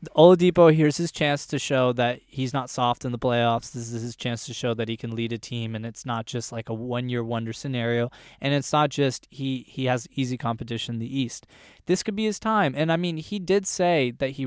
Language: English